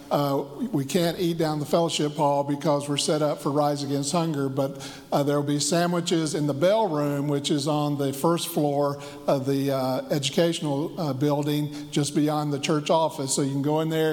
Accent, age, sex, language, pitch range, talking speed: American, 50-69, male, English, 145-165 Hz, 210 wpm